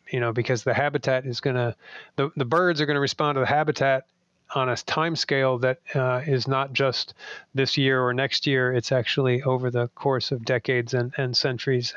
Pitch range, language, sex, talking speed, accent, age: 130-145 Hz, English, male, 210 wpm, American, 40-59